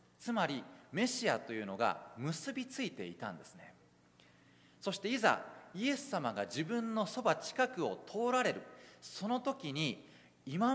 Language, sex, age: Japanese, male, 40-59